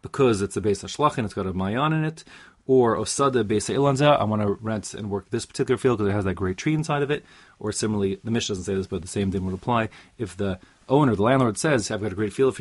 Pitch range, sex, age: 95-125 Hz, male, 30-49